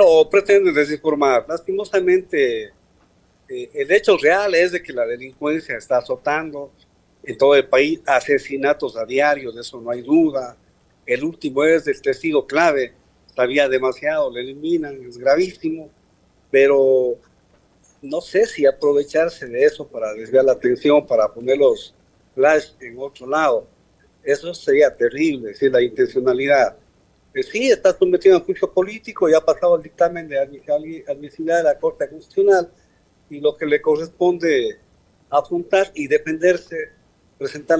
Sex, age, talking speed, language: male, 50-69, 145 wpm, Spanish